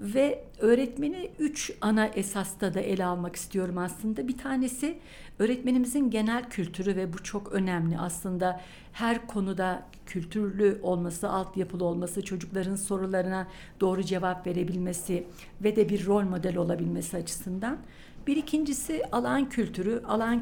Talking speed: 125 wpm